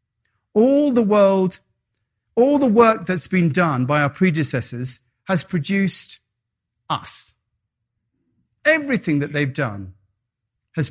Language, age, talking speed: English, 40-59, 110 wpm